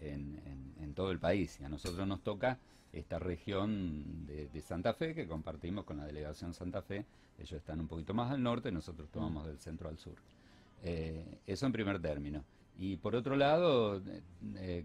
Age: 40-59